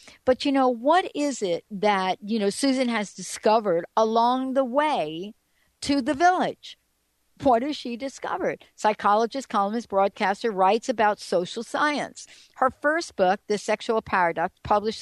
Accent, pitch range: American, 185-260 Hz